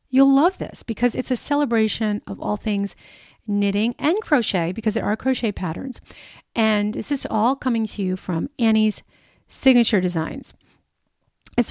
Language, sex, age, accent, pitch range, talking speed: English, female, 40-59, American, 195-250 Hz, 155 wpm